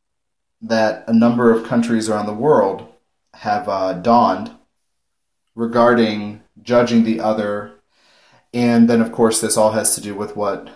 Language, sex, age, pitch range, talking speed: English, male, 30-49, 105-120 Hz, 145 wpm